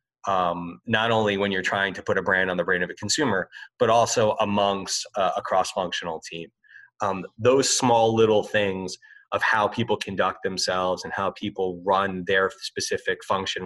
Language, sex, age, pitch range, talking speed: English, male, 30-49, 100-135 Hz, 175 wpm